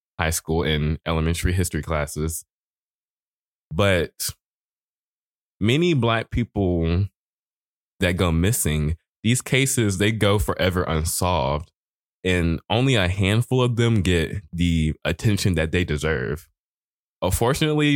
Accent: American